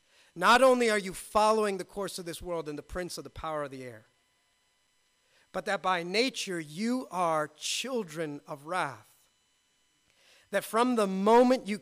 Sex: male